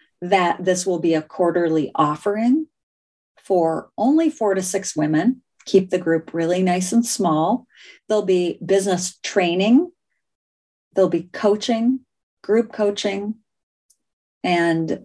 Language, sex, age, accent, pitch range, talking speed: English, female, 40-59, American, 170-205 Hz, 120 wpm